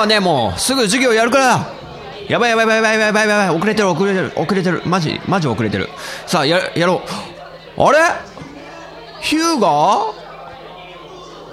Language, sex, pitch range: Japanese, male, 125-210 Hz